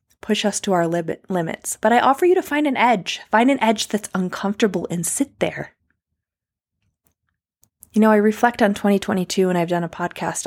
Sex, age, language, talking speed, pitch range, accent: female, 20-39, English, 185 wpm, 170-210 Hz, American